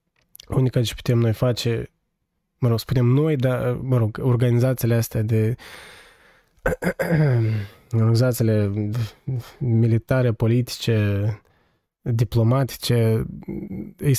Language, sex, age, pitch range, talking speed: Romanian, male, 20-39, 115-135 Hz, 85 wpm